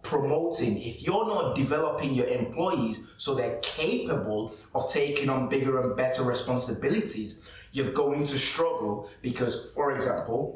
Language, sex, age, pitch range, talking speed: English, male, 20-39, 115-150 Hz, 135 wpm